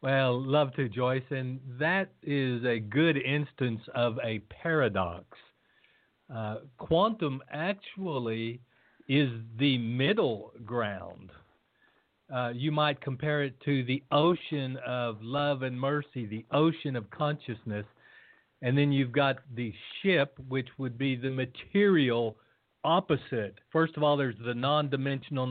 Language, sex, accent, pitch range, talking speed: English, male, American, 120-150 Hz, 125 wpm